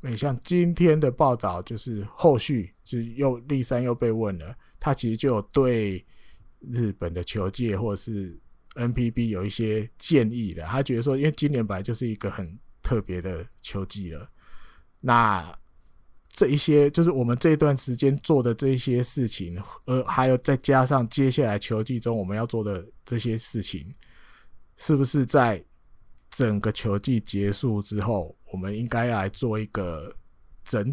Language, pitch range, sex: Chinese, 100-125 Hz, male